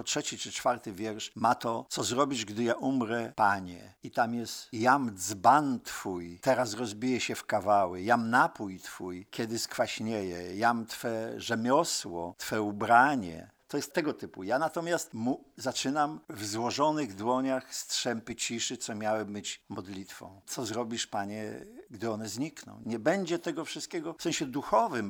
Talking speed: 150 wpm